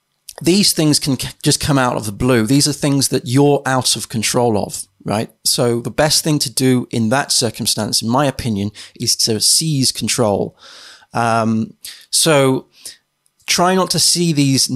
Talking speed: 170 wpm